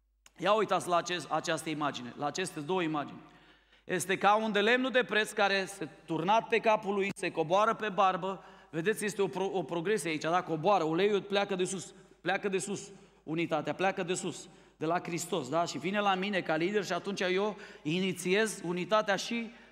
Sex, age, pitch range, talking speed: male, 30-49, 160-200 Hz, 190 wpm